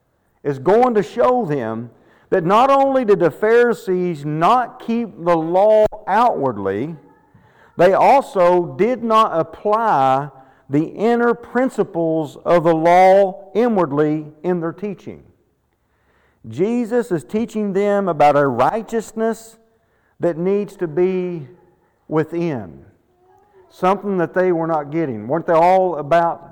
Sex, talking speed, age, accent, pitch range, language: male, 120 wpm, 50-69, American, 155-215 Hz, English